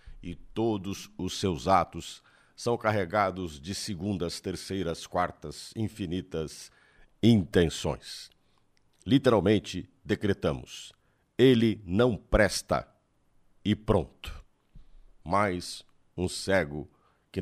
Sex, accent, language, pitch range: male, Brazilian, Portuguese, 95-135 Hz